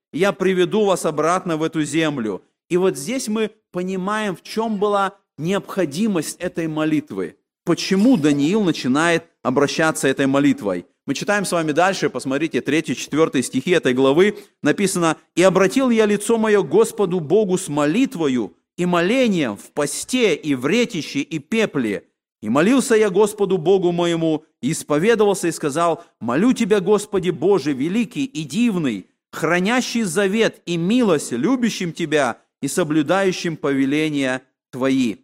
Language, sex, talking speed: Russian, male, 135 wpm